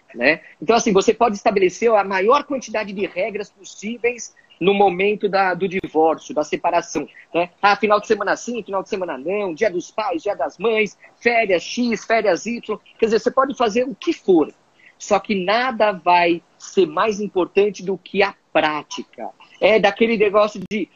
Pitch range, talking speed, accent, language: 195-230 Hz, 175 wpm, Brazilian, Portuguese